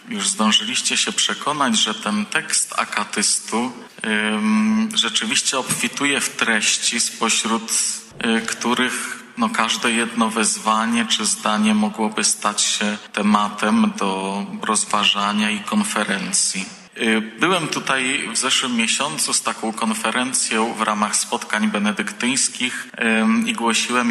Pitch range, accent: 105-125 Hz, native